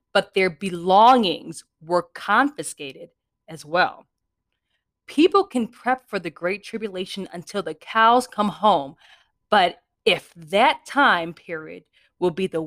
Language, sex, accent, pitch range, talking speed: English, female, American, 160-235 Hz, 130 wpm